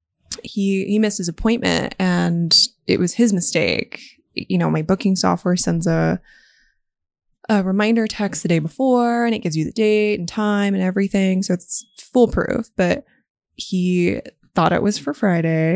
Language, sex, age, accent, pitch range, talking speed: English, female, 20-39, American, 175-240 Hz, 165 wpm